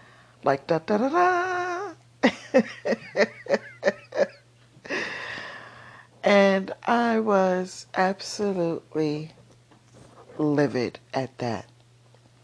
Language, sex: English, female